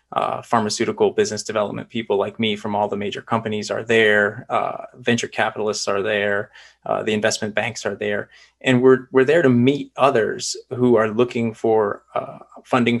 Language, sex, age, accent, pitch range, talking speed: English, male, 20-39, American, 110-125 Hz, 175 wpm